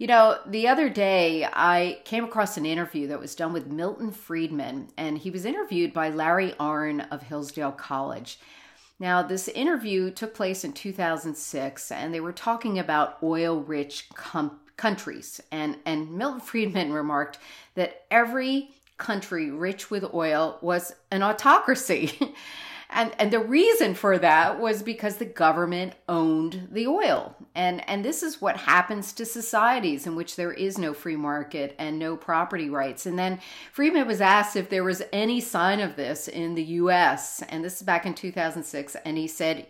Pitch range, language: 160-220 Hz, English